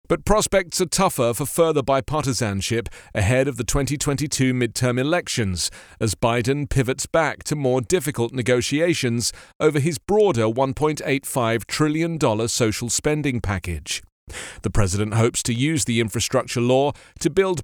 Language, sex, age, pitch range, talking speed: English, male, 40-59, 115-160 Hz, 135 wpm